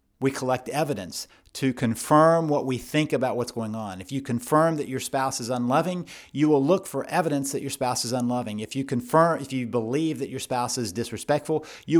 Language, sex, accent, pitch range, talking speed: English, male, American, 120-145 Hz, 210 wpm